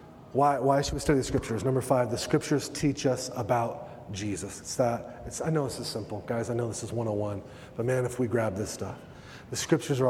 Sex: male